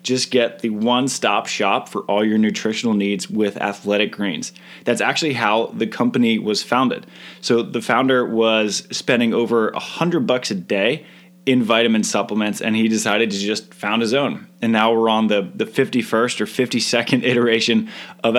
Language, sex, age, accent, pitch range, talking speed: English, male, 20-39, American, 105-125 Hz, 175 wpm